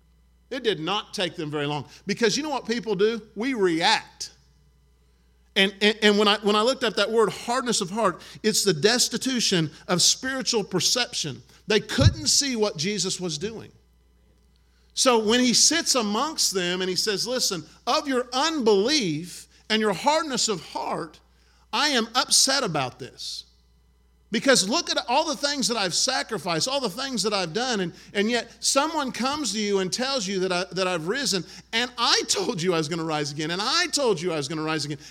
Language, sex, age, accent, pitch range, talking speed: English, male, 50-69, American, 160-245 Hz, 195 wpm